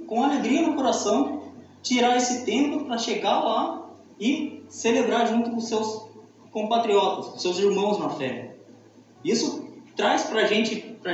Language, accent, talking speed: Portuguese, Brazilian, 140 wpm